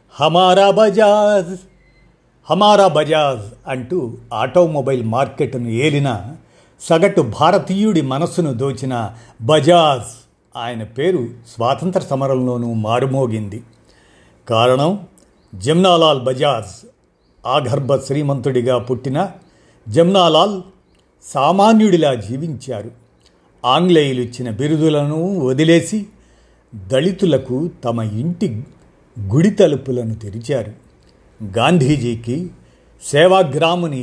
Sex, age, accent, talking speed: male, 50-69, native, 65 wpm